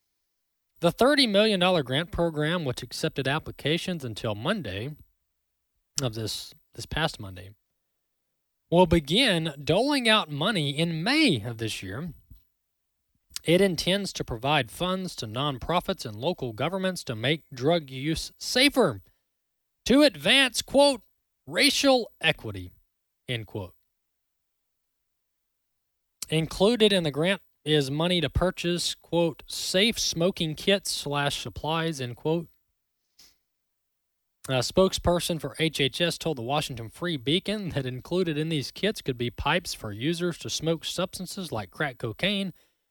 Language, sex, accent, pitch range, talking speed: English, male, American, 120-185 Hz, 125 wpm